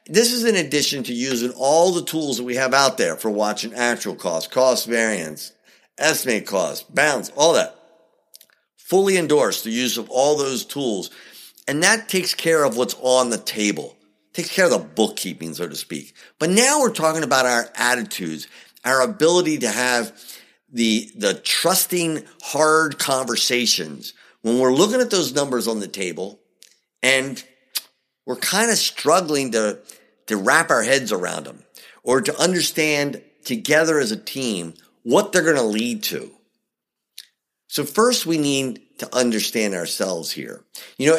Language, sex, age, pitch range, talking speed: English, male, 50-69, 120-170 Hz, 160 wpm